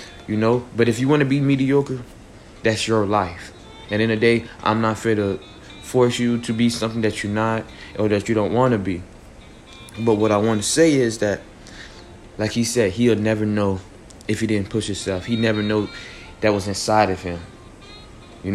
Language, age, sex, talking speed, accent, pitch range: English, 20-39, male, 205 wpm, American, 100-120 Hz